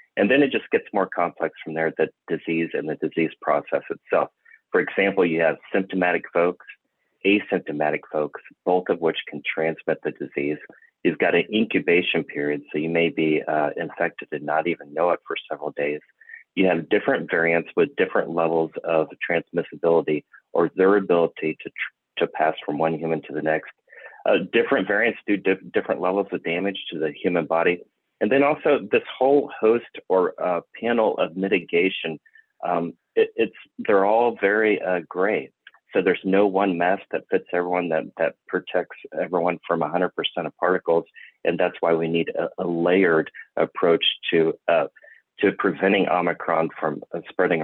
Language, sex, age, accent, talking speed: English, male, 30-49, American, 170 wpm